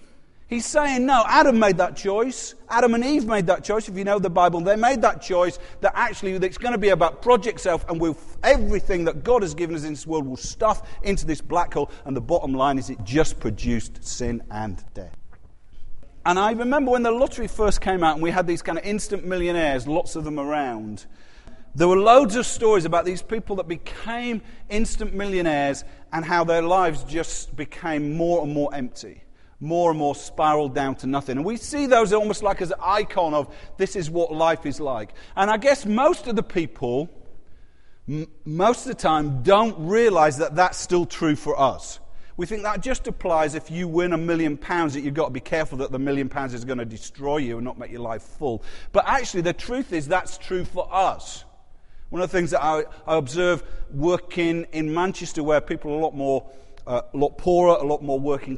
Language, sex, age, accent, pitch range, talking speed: English, male, 40-59, British, 145-205 Hz, 215 wpm